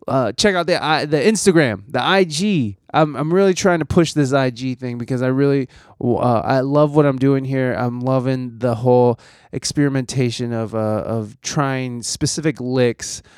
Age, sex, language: 20-39, male, English